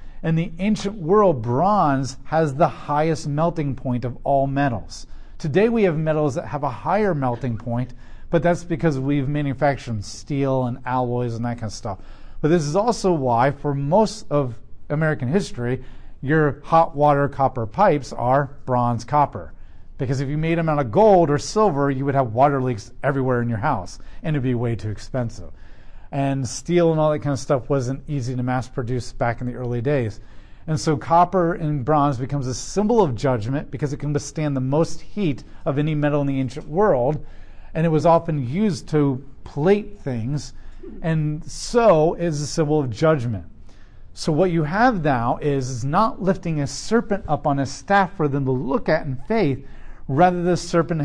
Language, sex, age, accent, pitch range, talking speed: English, male, 40-59, American, 125-160 Hz, 190 wpm